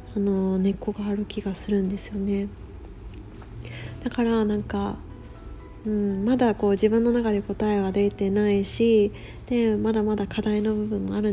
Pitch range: 190-225 Hz